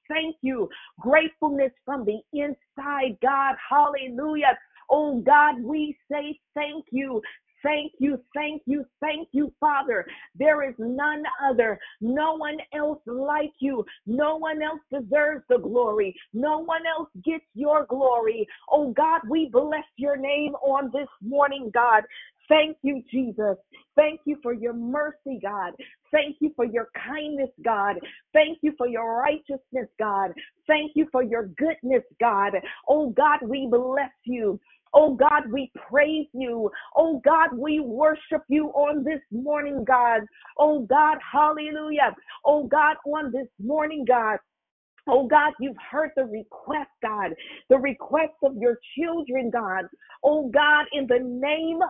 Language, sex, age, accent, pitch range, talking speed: English, female, 50-69, American, 245-300 Hz, 145 wpm